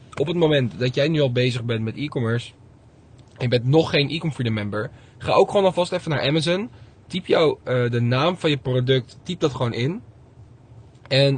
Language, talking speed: Dutch, 205 wpm